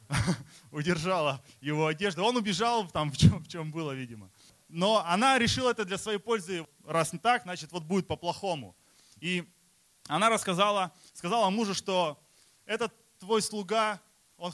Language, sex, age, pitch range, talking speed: Russian, male, 20-39, 145-190 Hz, 145 wpm